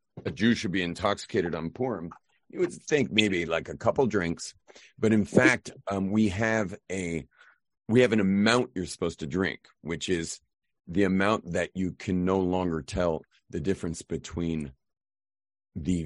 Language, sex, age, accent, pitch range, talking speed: English, male, 40-59, American, 80-100 Hz, 165 wpm